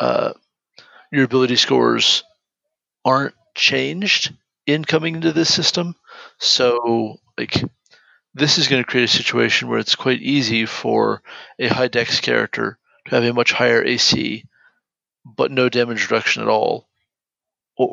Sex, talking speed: male, 135 wpm